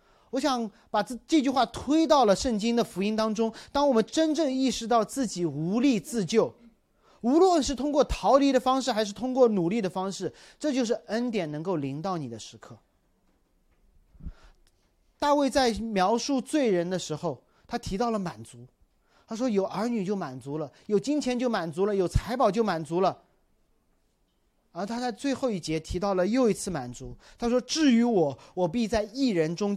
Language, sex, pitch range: Chinese, male, 160-240 Hz